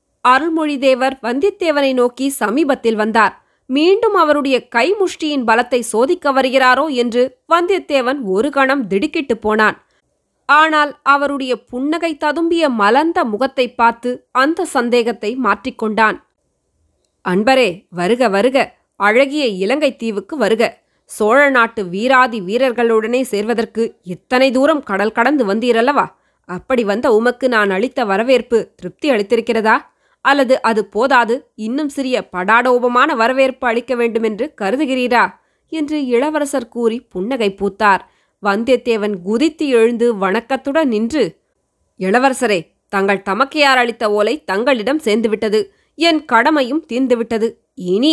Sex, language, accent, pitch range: female, Tamil, native, 215-275 Hz